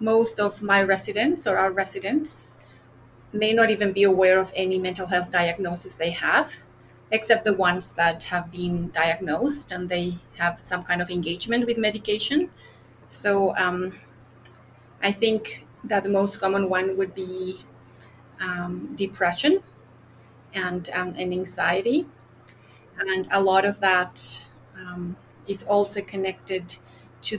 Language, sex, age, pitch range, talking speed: English, female, 30-49, 175-195 Hz, 135 wpm